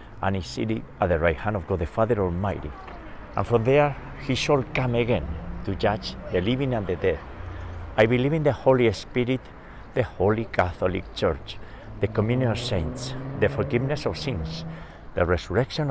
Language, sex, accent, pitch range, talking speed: English, male, Spanish, 85-120 Hz, 175 wpm